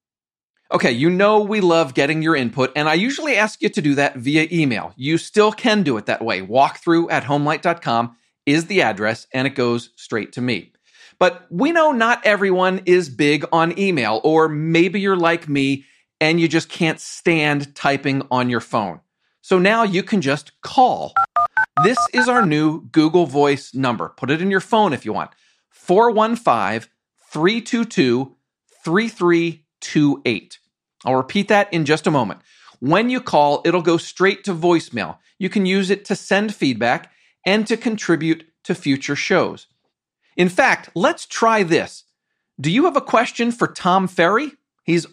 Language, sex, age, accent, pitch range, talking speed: English, male, 40-59, American, 145-200 Hz, 165 wpm